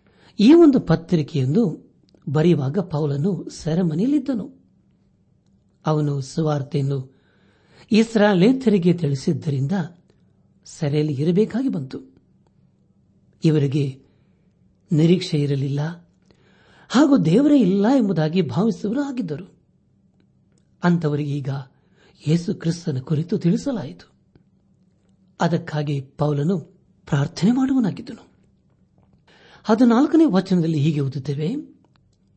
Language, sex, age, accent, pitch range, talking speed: Kannada, male, 60-79, native, 145-190 Hz, 65 wpm